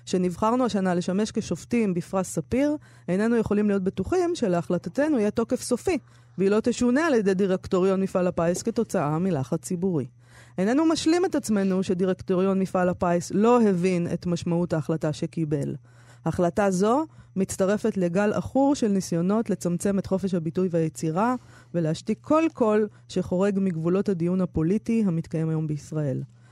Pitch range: 170-225 Hz